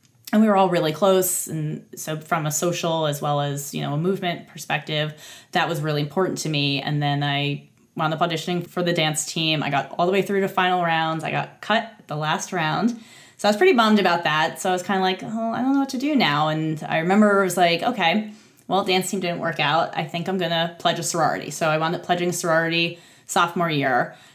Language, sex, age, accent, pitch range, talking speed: English, female, 20-39, American, 150-180 Hz, 245 wpm